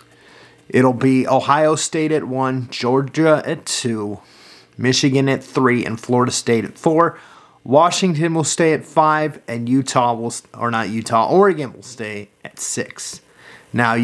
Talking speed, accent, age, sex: 150 wpm, American, 30-49, male